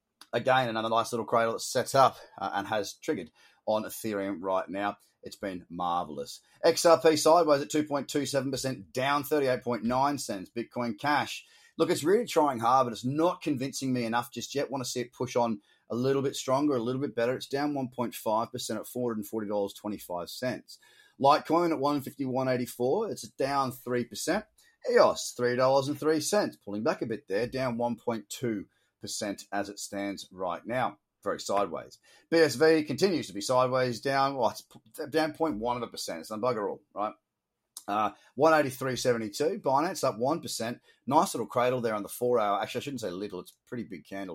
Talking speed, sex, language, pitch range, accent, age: 165 wpm, male, English, 110-145 Hz, Australian, 30-49